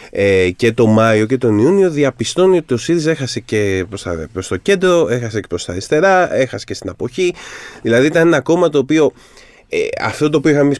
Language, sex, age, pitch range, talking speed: Greek, male, 30-49, 115-160 Hz, 195 wpm